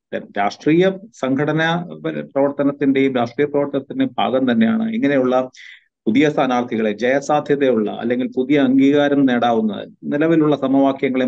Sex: male